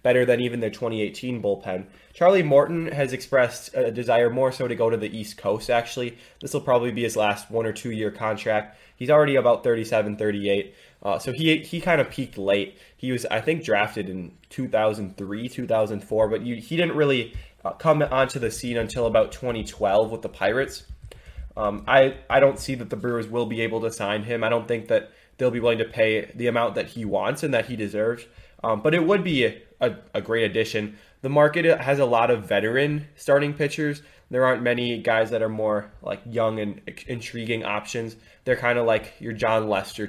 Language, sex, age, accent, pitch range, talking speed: English, male, 20-39, American, 105-130 Hz, 205 wpm